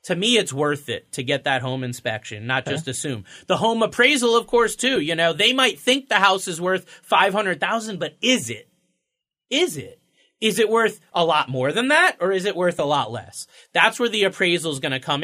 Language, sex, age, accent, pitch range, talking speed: English, male, 30-49, American, 155-210 Hz, 225 wpm